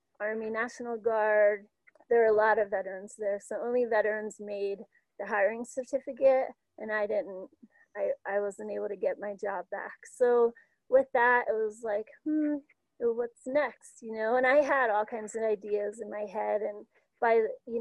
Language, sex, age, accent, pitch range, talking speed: English, female, 30-49, American, 215-245 Hz, 180 wpm